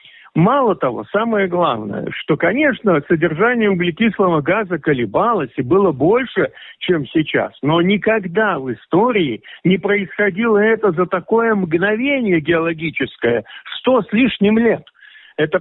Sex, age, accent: male, 50-69, native